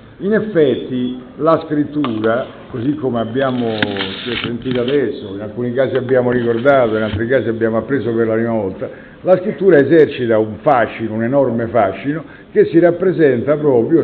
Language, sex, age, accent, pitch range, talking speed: Italian, male, 60-79, native, 115-145 Hz, 150 wpm